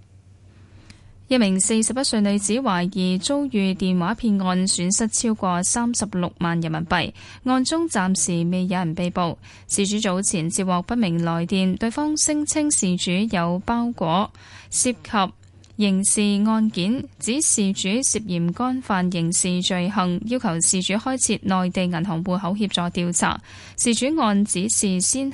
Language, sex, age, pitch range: Chinese, female, 10-29, 175-230 Hz